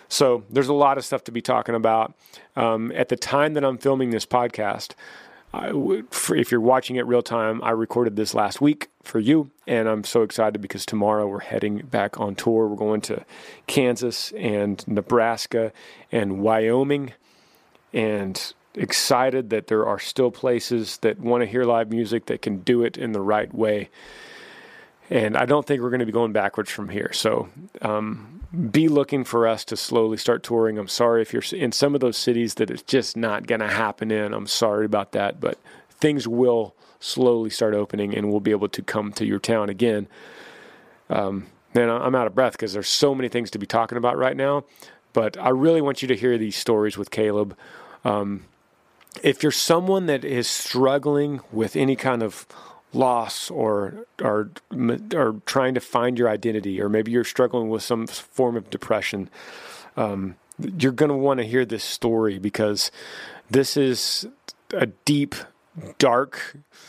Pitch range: 105-130 Hz